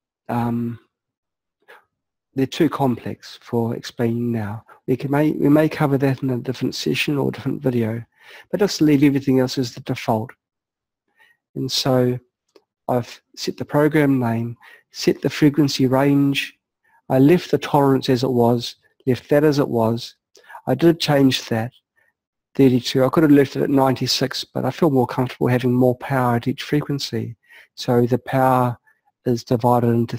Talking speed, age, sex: 165 wpm, 50-69, male